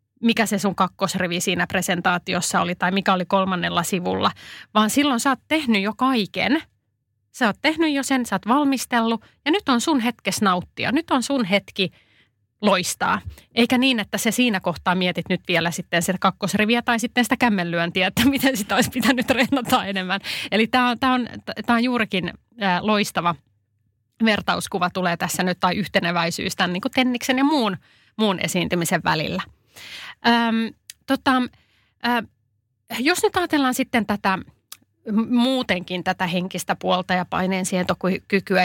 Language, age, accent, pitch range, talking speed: Finnish, 30-49, native, 180-240 Hz, 145 wpm